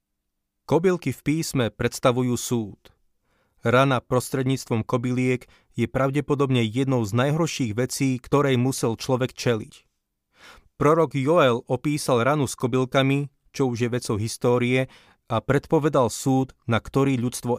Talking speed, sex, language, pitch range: 120 wpm, male, Slovak, 115-135 Hz